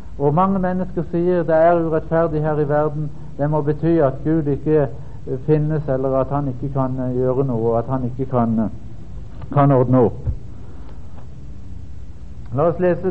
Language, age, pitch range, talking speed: Danish, 60-79, 125-160 Hz, 160 wpm